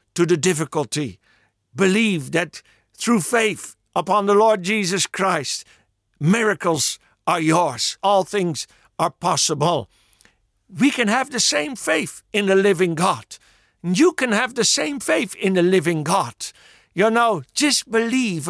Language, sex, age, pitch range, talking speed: English, male, 60-79, 155-210 Hz, 140 wpm